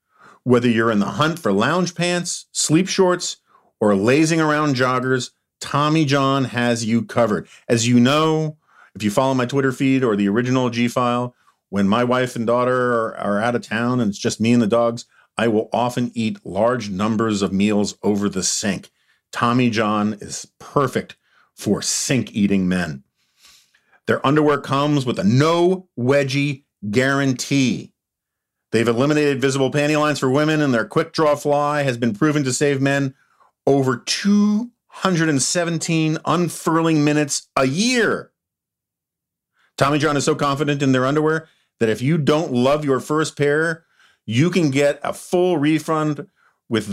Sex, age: male, 40-59